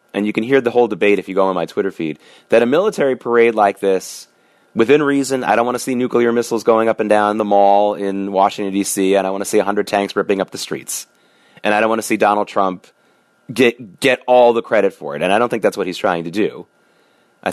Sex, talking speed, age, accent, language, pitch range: male, 260 wpm, 30-49, American, English, 95-115 Hz